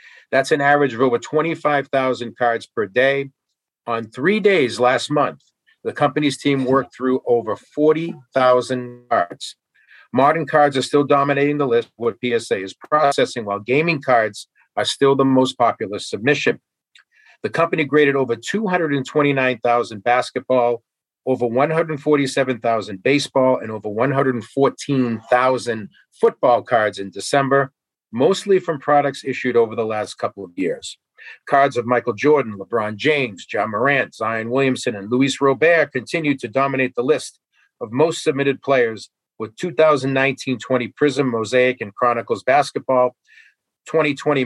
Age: 40-59